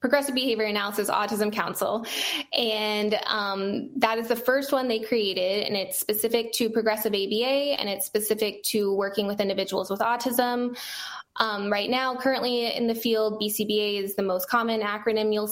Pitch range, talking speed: 195-230 Hz, 165 wpm